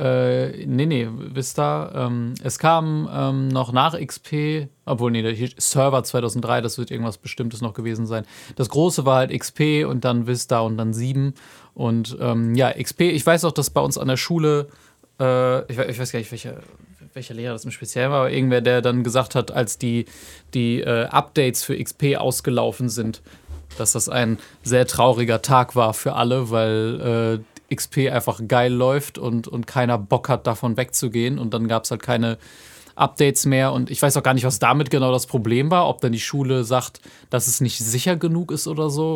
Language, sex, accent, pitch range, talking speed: German, male, German, 115-135 Hz, 200 wpm